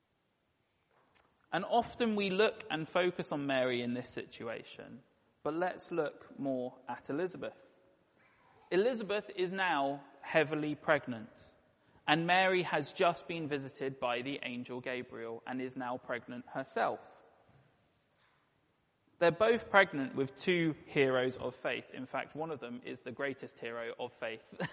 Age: 20-39